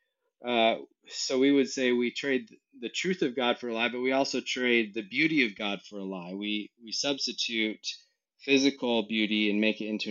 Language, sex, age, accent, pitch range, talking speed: English, male, 30-49, American, 105-135 Hz, 200 wpm